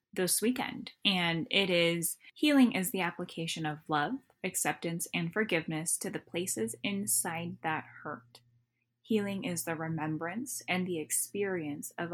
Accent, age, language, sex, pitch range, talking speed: American, 10-29, English, female, 155-185 Hz, 140 wpm